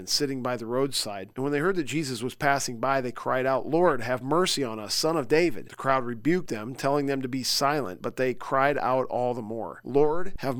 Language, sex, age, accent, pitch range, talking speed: English, male, 40-59, American, 125-150 Hz, 240 wpm